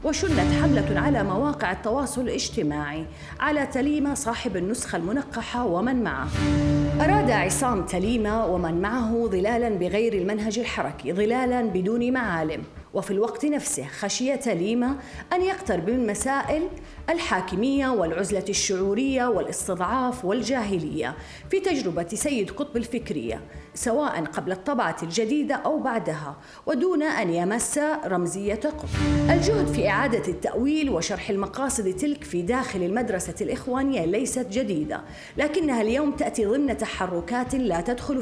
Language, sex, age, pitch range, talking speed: Arabic, female, 30-49, 190-270 Hz, 120 wpm